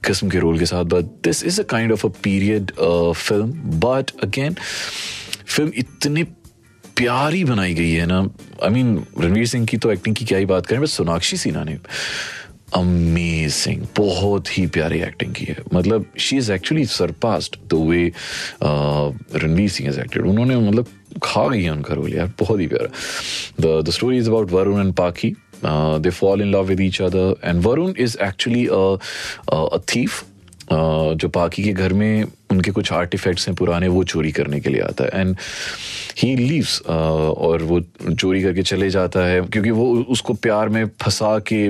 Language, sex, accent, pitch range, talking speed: Hindi, male, native, 85-110 Hz, 180 wpm